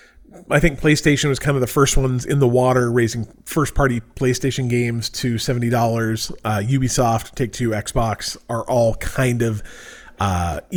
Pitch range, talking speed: 115-150 Hz, 150 wpm